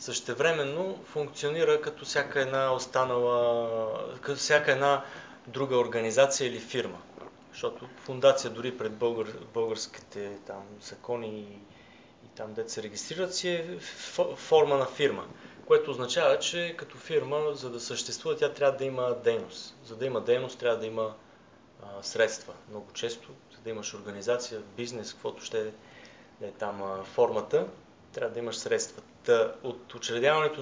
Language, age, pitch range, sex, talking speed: Bulgarian, 20-39, 110-150 Hz, male, 140 wpm